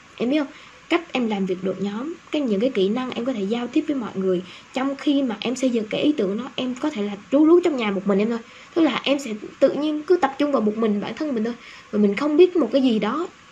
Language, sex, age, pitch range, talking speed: Vietnamese, female, 10-29, 205-280 Hz, 300 wpm